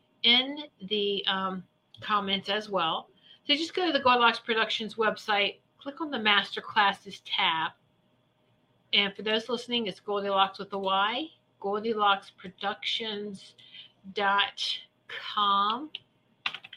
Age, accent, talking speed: 50-69, American, 110 wpm